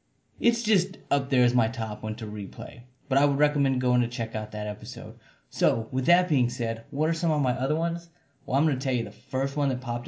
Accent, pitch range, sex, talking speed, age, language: American, 120-145 Hz, male, 255 wpm, 30-49, English